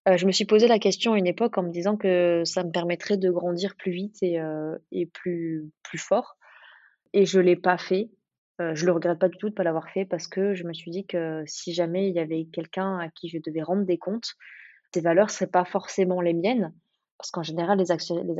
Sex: female